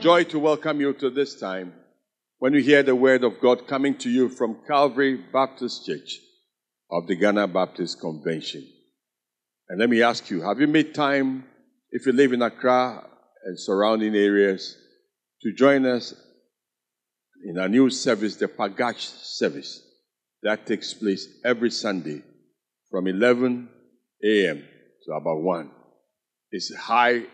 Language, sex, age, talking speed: English, male, 50-69, 145 wpm